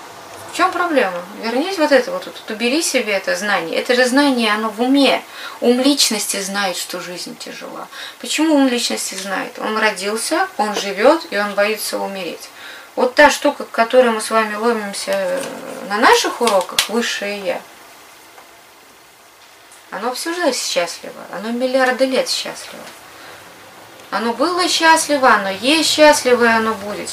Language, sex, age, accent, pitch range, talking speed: Russian, female, 20-39, native, 205-270 Hz, 145 wpm